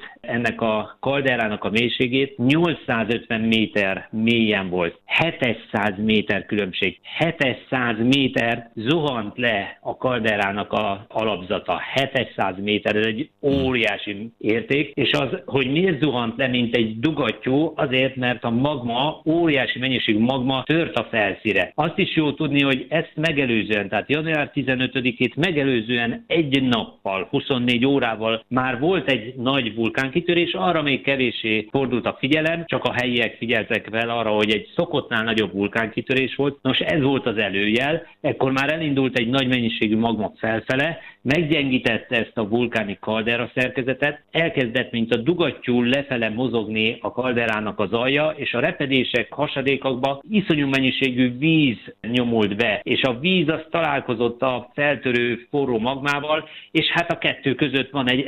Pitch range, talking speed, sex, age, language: 115-145 Hz, 145 wpm, male, 60-79, Hungarian